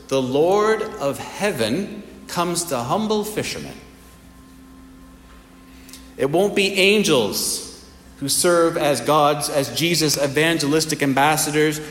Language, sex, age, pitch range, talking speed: English, male, 40-59, 90-150 Hz, 100 wpm